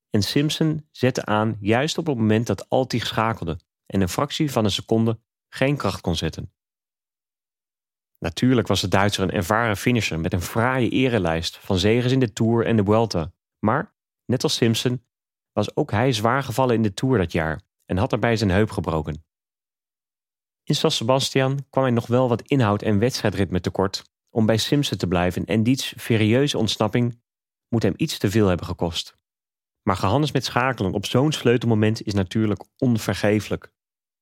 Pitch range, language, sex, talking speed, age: 100-125 Hz, English, male, 170 wpm, 30-49